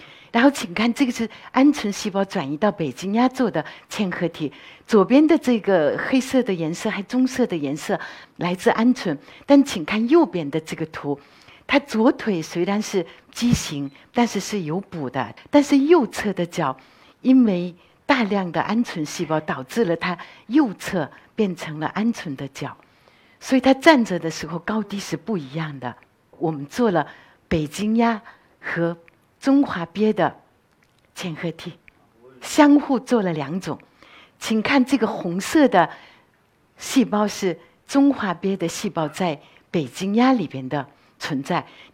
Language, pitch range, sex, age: Chinese, 160-235 Hz, female, 60-79